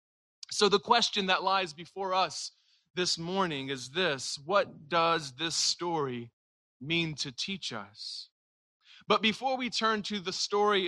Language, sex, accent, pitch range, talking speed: English, male, American, 135-205 Hz, 145 wpm